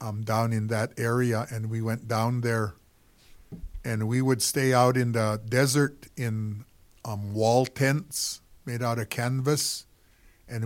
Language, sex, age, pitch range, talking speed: English, male, 50-69, 110-130 Hz, 150 wpm